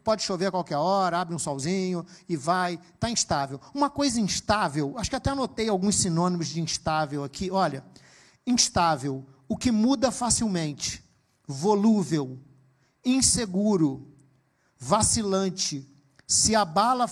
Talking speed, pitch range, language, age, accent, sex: 125 wpm, 155-220 Hz, Portuguese, 50-69, Brazilian, male